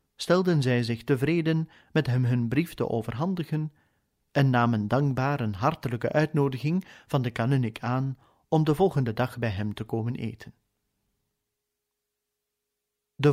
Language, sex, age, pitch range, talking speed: Dutch, male, 30-49, 120-155 Hz, 135 wpm